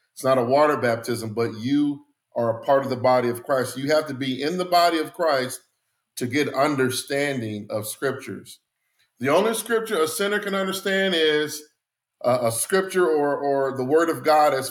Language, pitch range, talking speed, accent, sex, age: English, 130-165 Hz, 190 wpm, American, male, 50-69